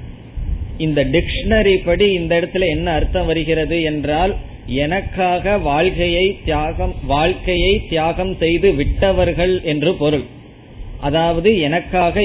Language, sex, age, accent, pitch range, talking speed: Tamil, male, 20-39, native, 140-180 Hz, 100 wpm